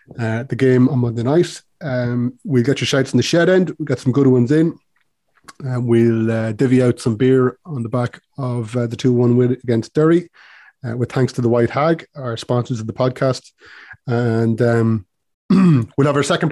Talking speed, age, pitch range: 210 wpm, 30-49, 115-135 Hz